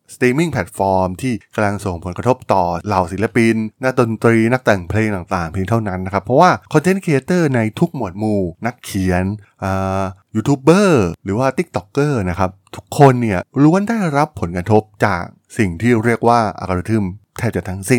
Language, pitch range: Thai, 95-125 Hz